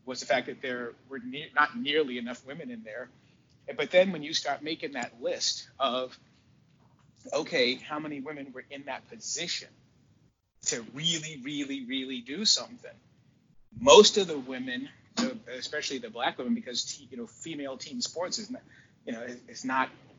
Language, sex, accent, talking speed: English, male, American, 170 wpm